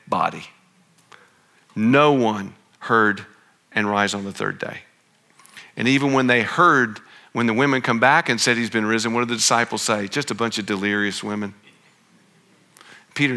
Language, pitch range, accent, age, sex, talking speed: English, 110-135 Hz, American, 50-69, male, 165 wpm